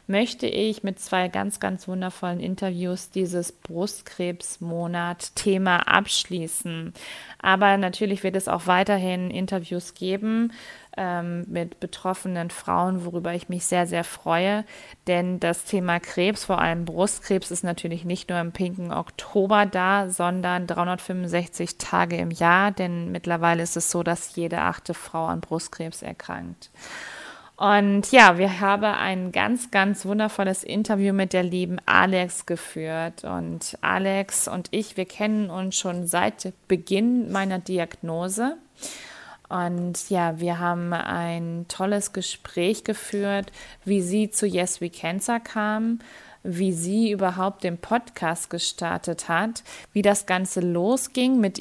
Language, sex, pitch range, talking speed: German, female, 175-200 Hz, 135 wpm